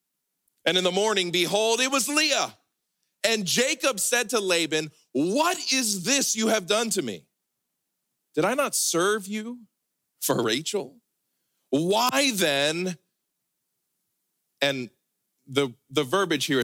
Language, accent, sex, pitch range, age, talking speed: English, American, male, 130-210 Hz, 40-59, 125 wpm